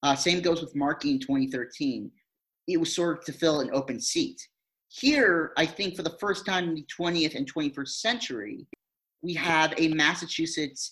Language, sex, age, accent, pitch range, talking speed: English, male, 30-49, American, 135-200 Hz, 180 wpm